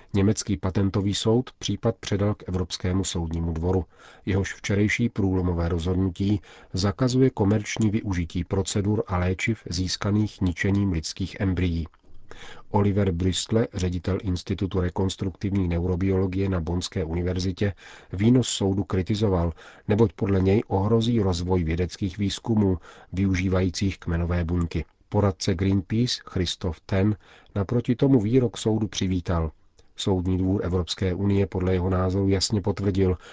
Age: 40-59